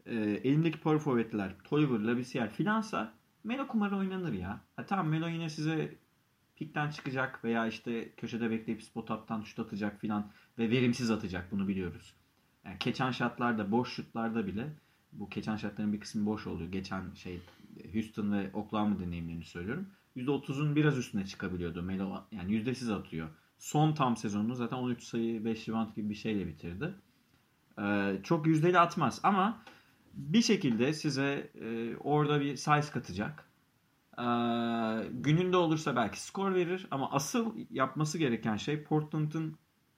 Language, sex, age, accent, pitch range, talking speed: Turkish, male, 30-49, native, 105-150 Hz, 140 wpm